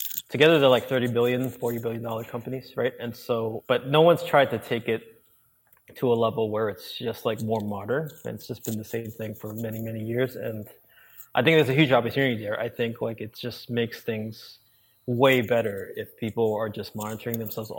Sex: male